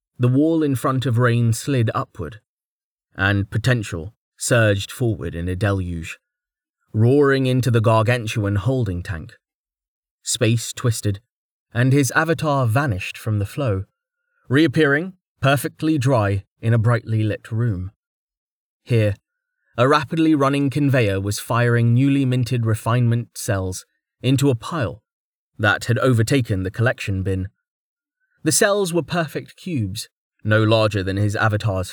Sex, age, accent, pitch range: male, 30-49, British, 105-140 Hz